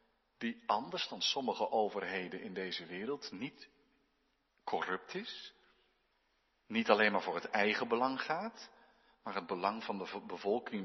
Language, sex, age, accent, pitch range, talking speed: Dutch, male, 40-59, Dutch, 150-235 Hz, 140 wpm